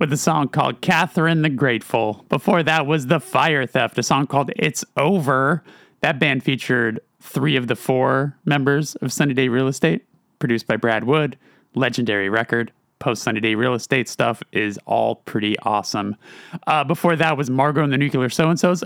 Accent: American